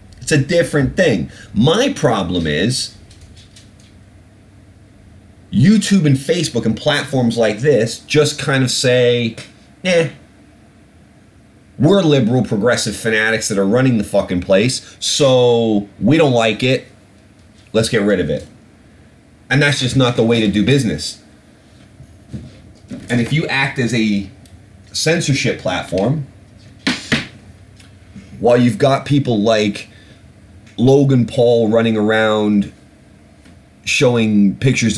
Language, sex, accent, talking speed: English, male, American, 115 wpm